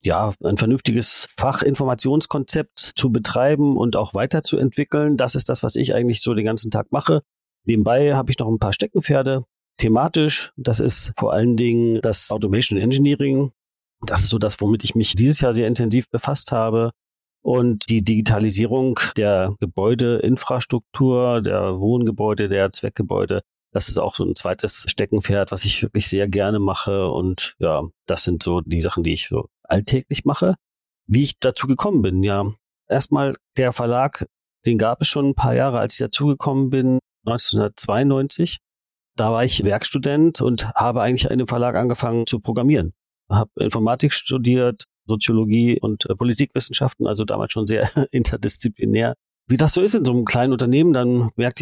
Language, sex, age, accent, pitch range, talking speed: German, male, 40-59, German, 105-130 Hz, 165 wpm